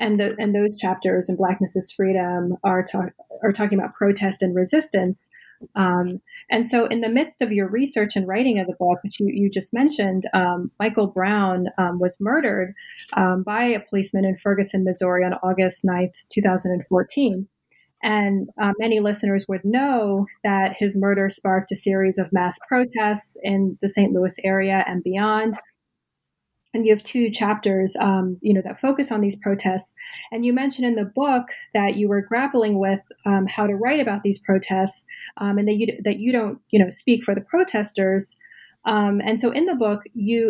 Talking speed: 185 wpm